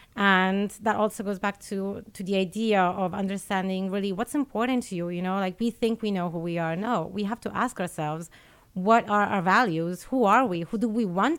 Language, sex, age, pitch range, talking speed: English, female, 30-49, 180-215 Hz, 225 wpm